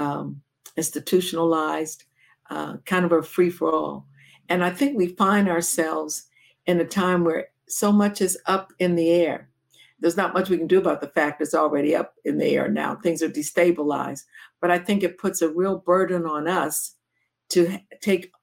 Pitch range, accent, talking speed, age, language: 155-180 Hz, American, 185 wpm, 60-79, English